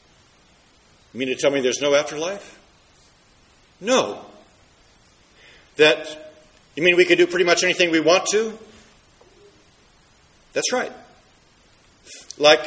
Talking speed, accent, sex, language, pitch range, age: 115 wpm, American, male, English, 160-205 Hz, 50-69